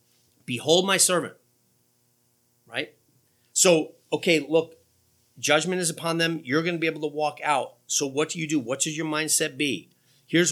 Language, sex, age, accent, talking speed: English, male, 40-59, American, 170 wpm